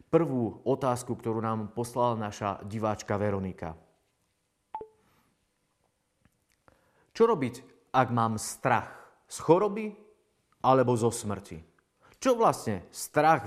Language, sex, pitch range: Slovak, male, 110-160 Hz